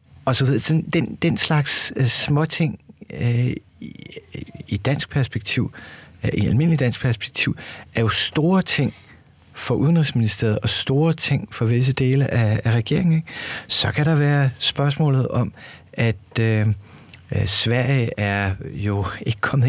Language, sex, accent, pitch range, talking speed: Danish, male, native, 105-130 Hz, 145 wpm